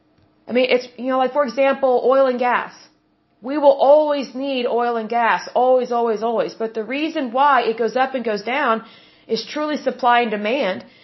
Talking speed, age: 195 wpm, 30-49